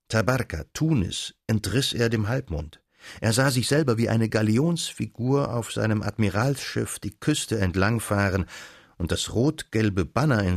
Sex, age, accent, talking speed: male, 60-79, German, 135 wpm